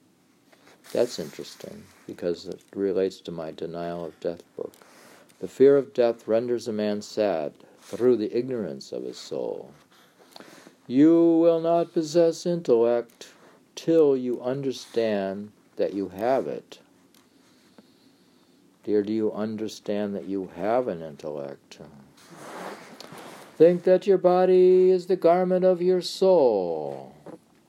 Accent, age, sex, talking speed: American, 50-69, male, 120 wpm